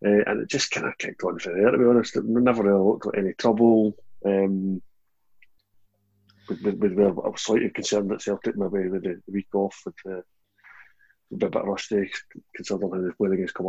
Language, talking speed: English, 210 wpm